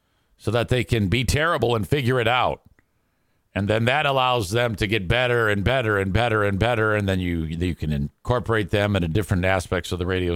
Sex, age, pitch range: male, 50-69, 95-125 Hz